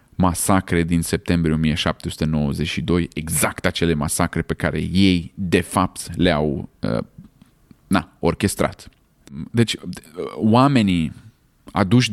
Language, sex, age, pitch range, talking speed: Romanian, male, 30-49, 85-110 Hz, 100 wpm